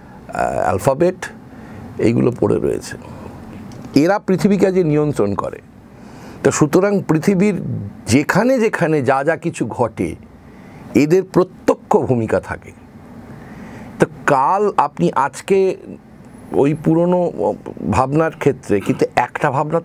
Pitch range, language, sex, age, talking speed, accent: 125-165 Hz, Bengali, male, 50-69, 100 wpm, native